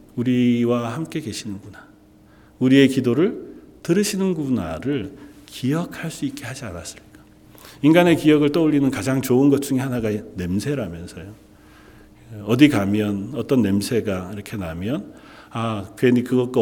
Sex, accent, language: male, native, Korean